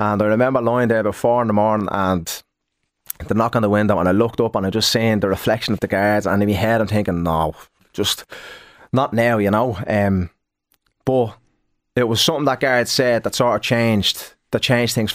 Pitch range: 95-115 Hz